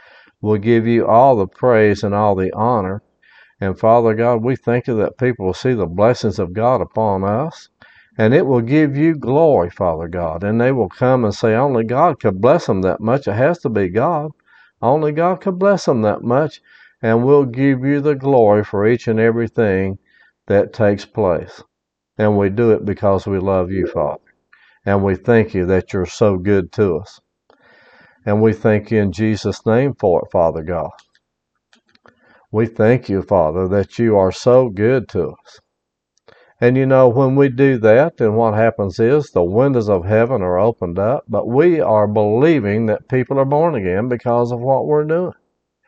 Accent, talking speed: American, 190 wpm